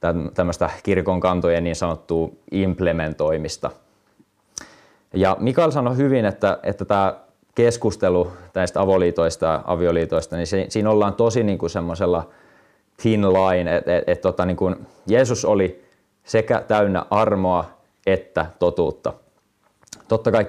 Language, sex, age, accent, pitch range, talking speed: Finnish, male, 20-39, native, 85-100 Hz, 115 wpm